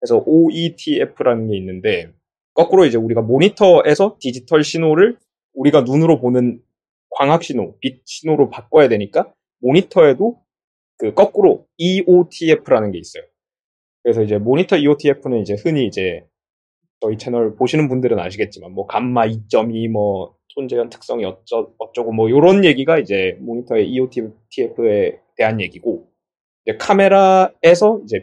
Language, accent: Korean, native